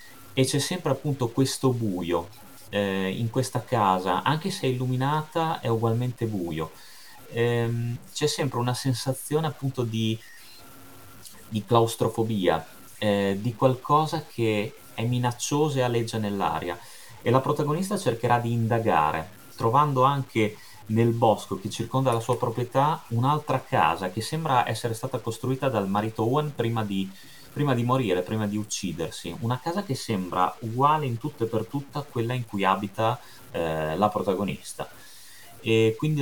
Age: 30-49